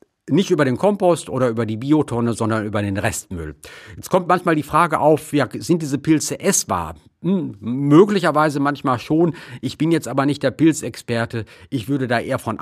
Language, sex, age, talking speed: German, male, 50-69, 180 wpm